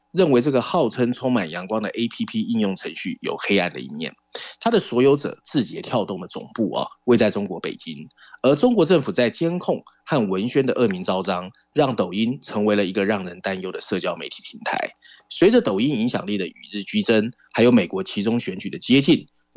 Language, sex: Chinese, male